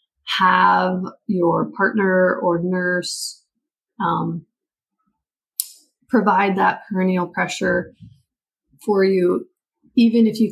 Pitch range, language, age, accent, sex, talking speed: 175-210 Hz, English, 30-49, American, female, 85 wpm